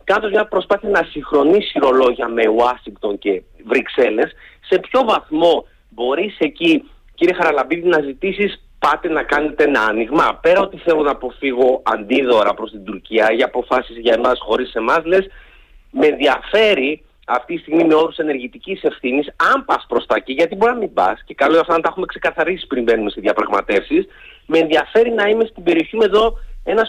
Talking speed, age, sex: 170 wpm, 30-49, male